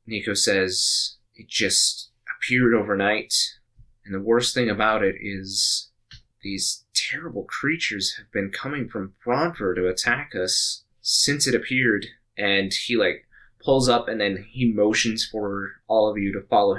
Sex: male